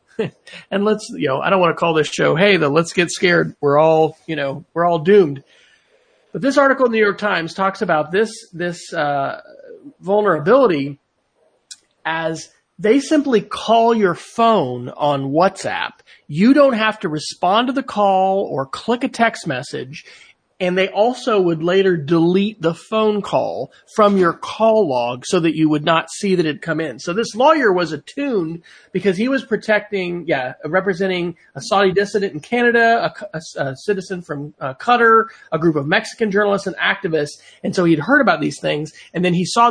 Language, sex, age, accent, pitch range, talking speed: English, male, 40-59, American, 160-215 Hz, 180 wpm